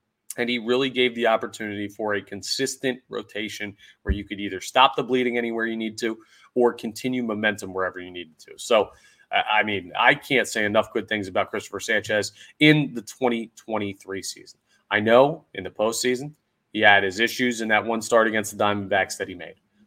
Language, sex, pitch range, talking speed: English, male, 105-125 Hz, 190 wpm